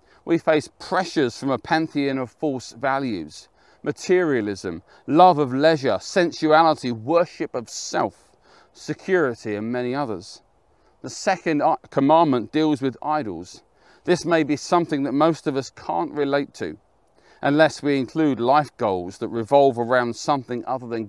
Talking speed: 140 wpm